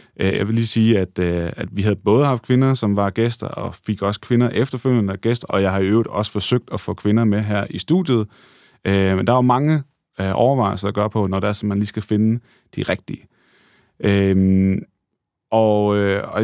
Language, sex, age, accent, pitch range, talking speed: Danish, male, 30-49, native, 100-125 Hz, 200 wpm